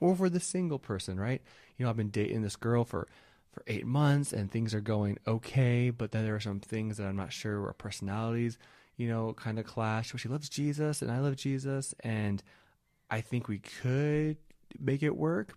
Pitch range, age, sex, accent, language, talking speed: 105-130 Hz, 20-39, male, American, English, 210 wpm